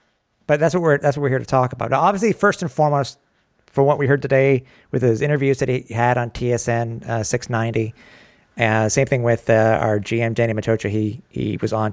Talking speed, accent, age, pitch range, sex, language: 225 wpm, American, 50-69, 110-145 Hz, male, English